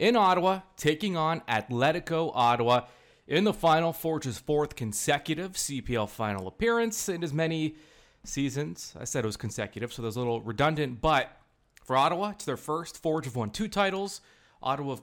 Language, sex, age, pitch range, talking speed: English, male, 30-49, 120-160 Hz, 170 wpm